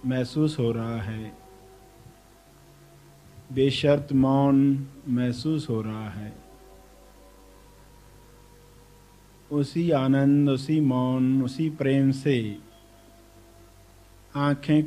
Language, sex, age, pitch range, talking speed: English, male, 50-69, 95-140 Hz, 75 wpm